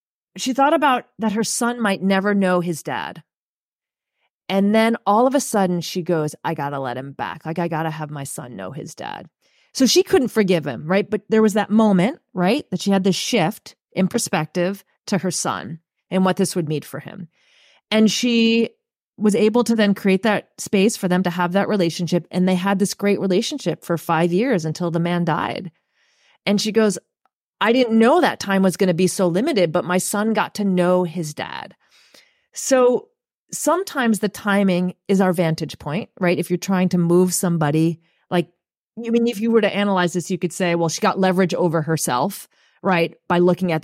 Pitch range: 165-215 Hz